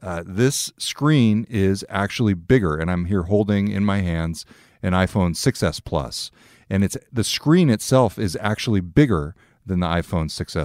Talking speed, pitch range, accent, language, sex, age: 160 wpm, 85-110 Hz, American, English, male, 40-59